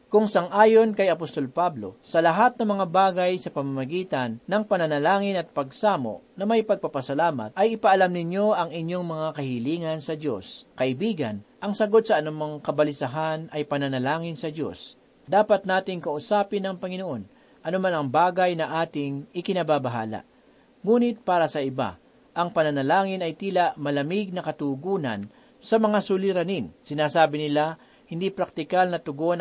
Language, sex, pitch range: Filipino, male, 145-195 Hz